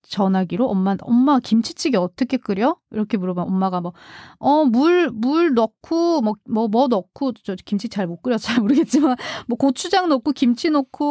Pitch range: 205-280 Hz